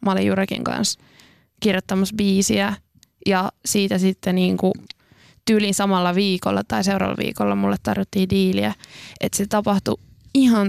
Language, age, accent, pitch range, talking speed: Finnish, 20-39, native, 175-200 Hz, 130 wpm